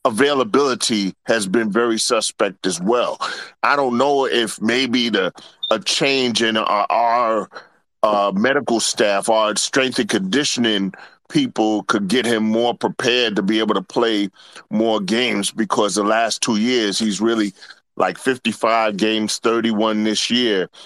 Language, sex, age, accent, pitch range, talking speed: English, male, 40-59, American, 105-135 Hz, 145 wpm